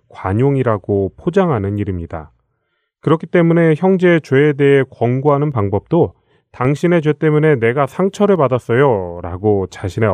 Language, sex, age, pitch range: Korean, male, 30-49, 100-145 Hz